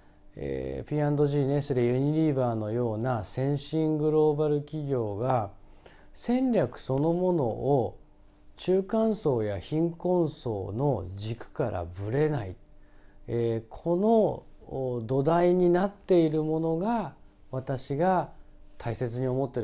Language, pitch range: Japanese, 115-175 Hz